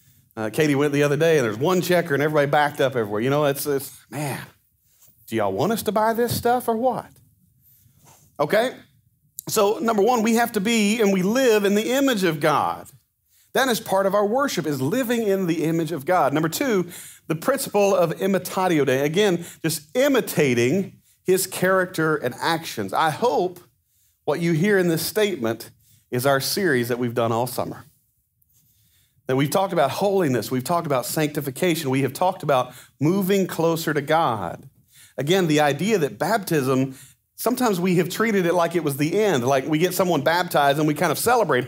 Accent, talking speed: American, 190 wpm